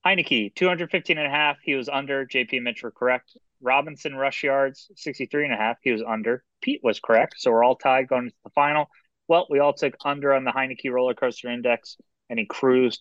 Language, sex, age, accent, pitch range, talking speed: English, male, 30-49, American, 120-155 Hz, 220 wpm